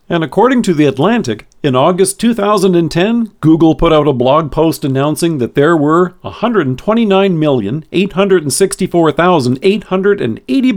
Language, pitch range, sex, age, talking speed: English, 130-185 Hz, male, 50-69, 105 wpm